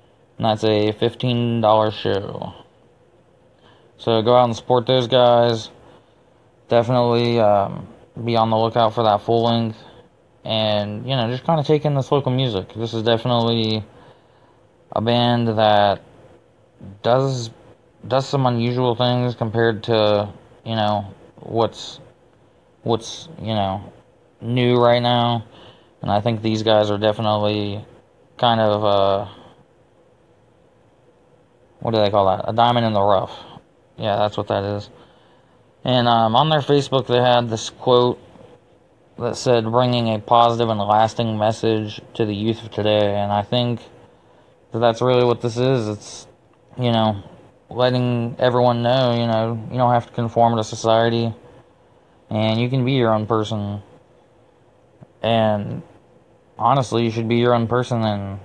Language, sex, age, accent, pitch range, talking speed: English, male, 20-39, American, 110-125 Hz, 145 wpm